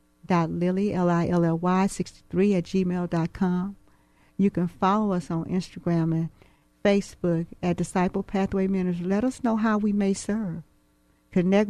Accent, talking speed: American, 150 wpm